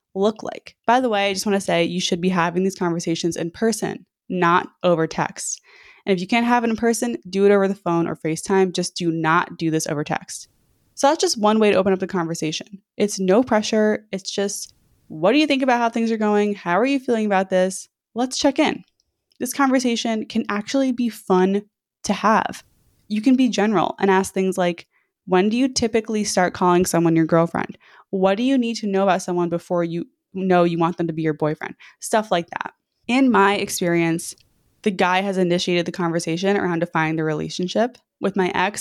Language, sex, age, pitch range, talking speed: English, female, 20-39, 175-220 Hz, 215 wpm